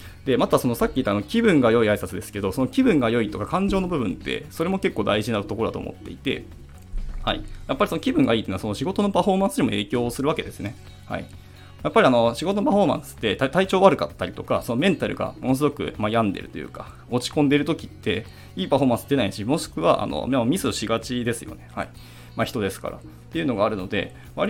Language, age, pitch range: Japanese, 20-39, 100-155 Hz